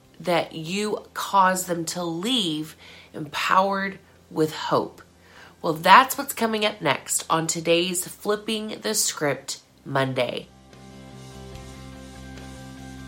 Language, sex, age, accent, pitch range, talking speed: English, female, 30-49, American, 145-195 Hz, 95 wpm